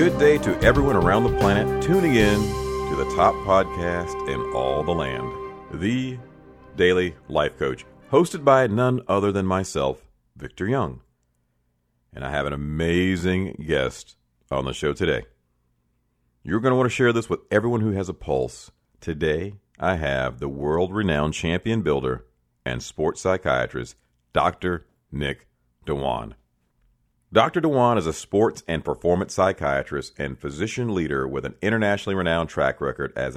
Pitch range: 65-100 Hz